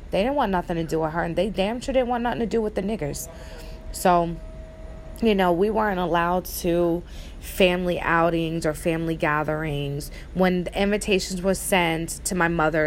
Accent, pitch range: American, 160-210 Hz